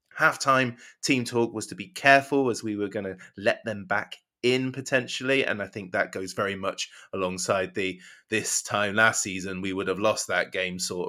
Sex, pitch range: male, 95-120 Hz